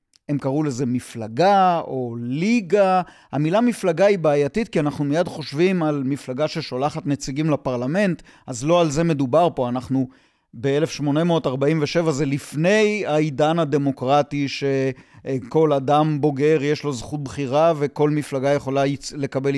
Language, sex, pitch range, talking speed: Hebrew, male, 140-185 Hz, 130 wpm